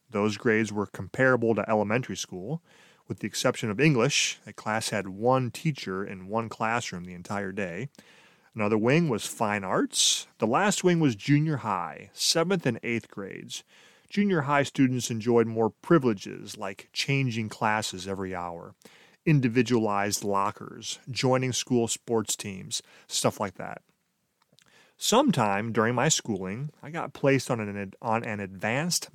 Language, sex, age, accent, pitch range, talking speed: English, male, 30-49, American, 110-140 Hz, 140 wpm